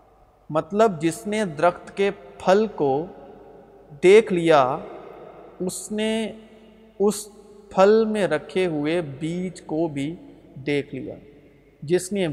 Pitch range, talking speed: 150-195 Hz, 110 wpm